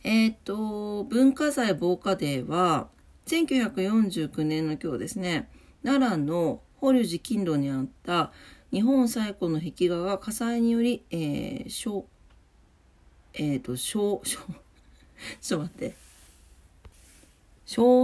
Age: 40-59